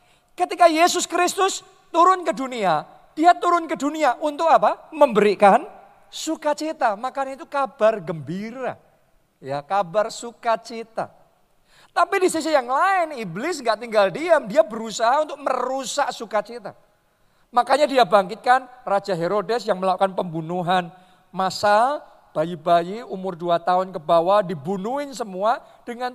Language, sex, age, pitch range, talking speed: Indonesian, male, 50-69, 190-290 Hz, 120 wpm